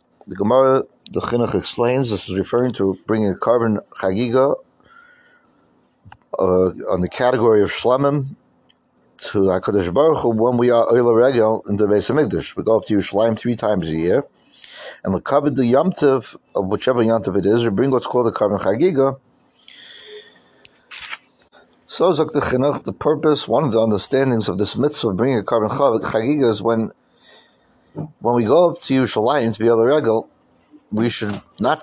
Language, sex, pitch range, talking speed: English, male, 110-140 Hz, 170 wpm